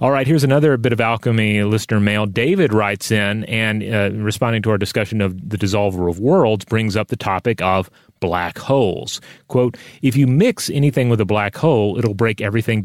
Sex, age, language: male, 30-49, English